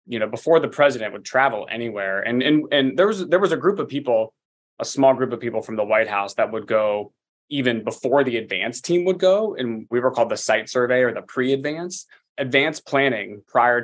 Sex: male